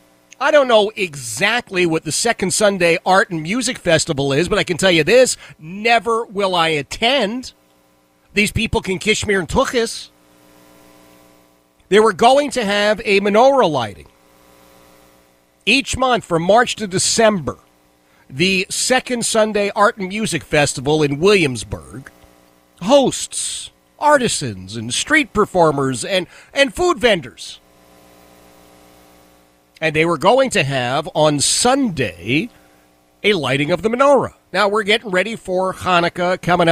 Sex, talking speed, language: male, 130 wpm, English